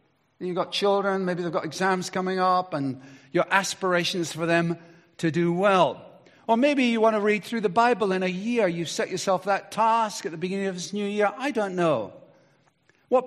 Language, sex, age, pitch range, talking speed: English, male, 50-69, 150-190 Hz, 205 wpm